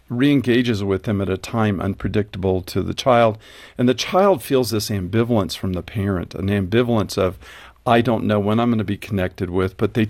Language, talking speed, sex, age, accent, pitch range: English, 200 wpm, male, 50-69, American, 95-115 Hz